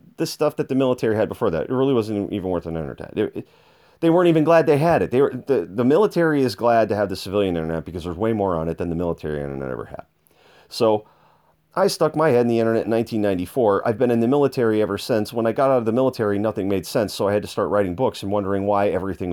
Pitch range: 100-130 Hz